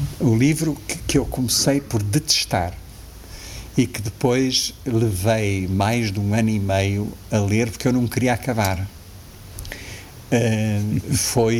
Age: 60-79